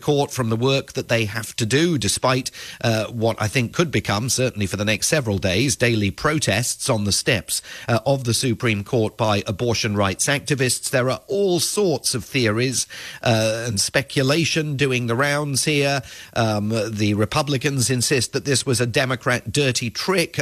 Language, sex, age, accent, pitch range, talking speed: English, male, 40-59, British, 115-140 Hz, 175 wpm